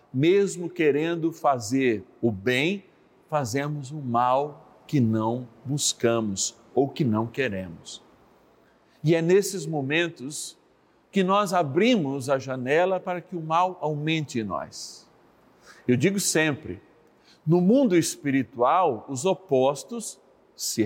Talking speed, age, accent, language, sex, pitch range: 115 wpm, 50-69, Brazilian, Portuguese, male, 130-185 Hz